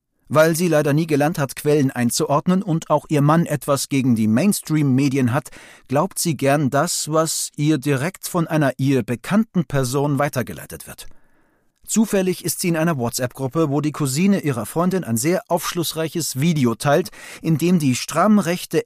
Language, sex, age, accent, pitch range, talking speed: German, male, 40-59, German, 130-165 Hz, 160 wpm